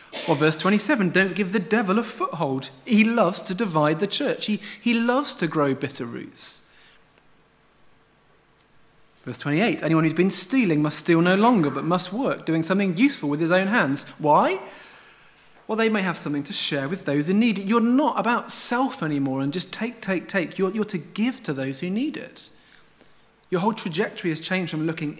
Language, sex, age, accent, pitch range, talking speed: English, male, 30-49, British, 150-215 Hz, 195 wpm